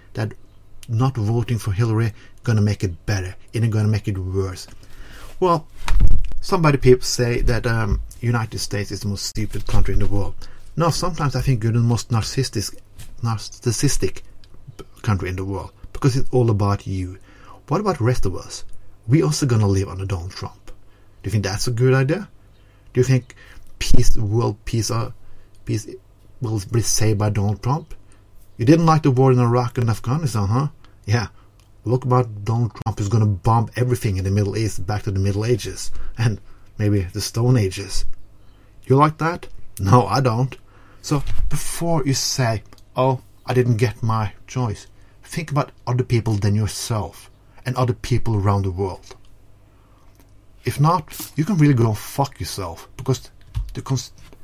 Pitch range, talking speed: 100-125 Hz, 175 wpm